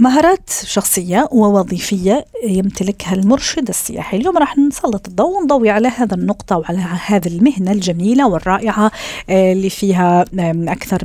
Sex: female